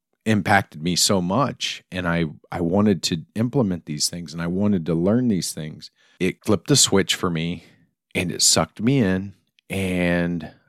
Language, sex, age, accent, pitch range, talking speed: English, male, 40-59, American, 85-105 Hz, 175 wpm